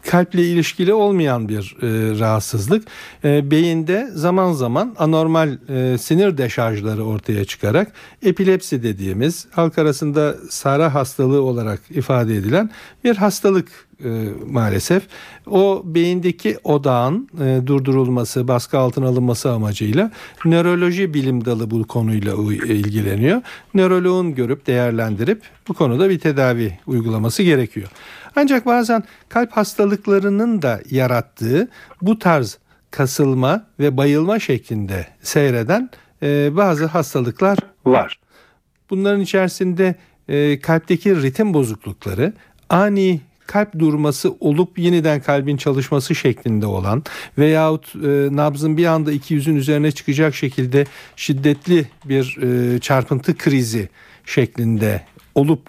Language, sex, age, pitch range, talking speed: Turkish, male, 60-79, 125-180 Hz, 105 wpm